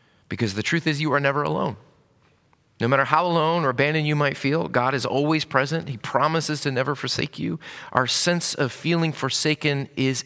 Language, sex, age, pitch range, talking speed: English, male, 30-49, 105-150 Hz, 195 wpm